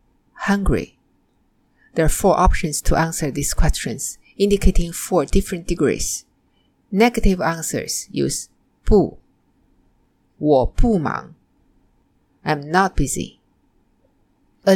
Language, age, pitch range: Chinese, 50-69, 150-200 Hz